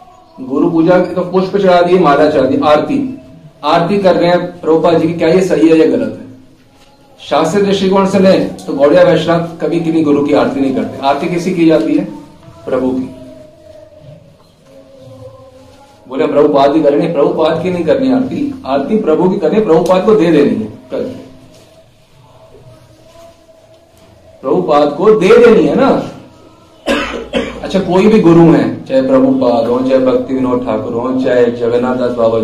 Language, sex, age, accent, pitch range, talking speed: Hindi, male, 40-59, native, 135-215 Hz, 155 wpm